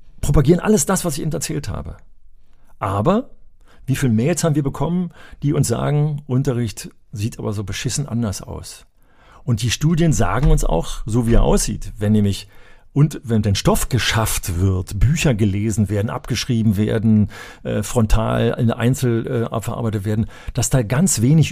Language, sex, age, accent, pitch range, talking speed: German, male, 40-59, German, 105-145 Hz, 165 wpm